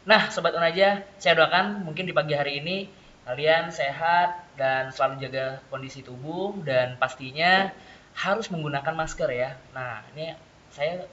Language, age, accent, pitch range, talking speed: Indonesian, 20-39, native, 130-160 Hz, 140 wpm